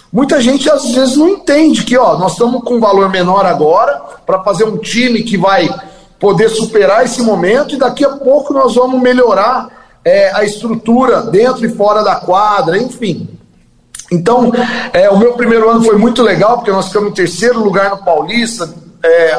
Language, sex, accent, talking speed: Portuguese, male, Brazilian, 185 wpm